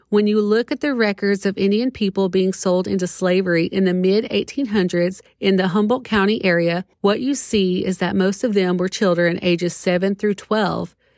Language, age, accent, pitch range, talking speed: English, 40-59, American, 185-225 Hz, 190 wpm